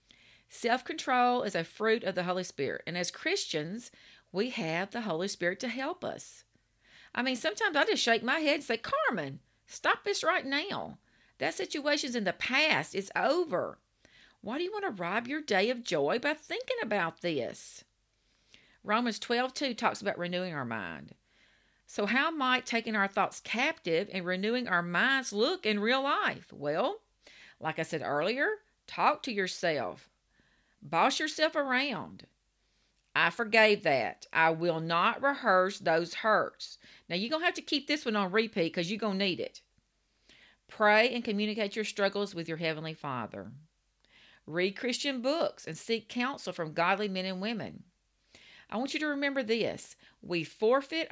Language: English